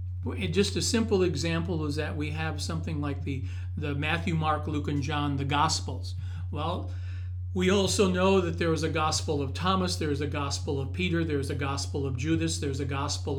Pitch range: 85-95 Hz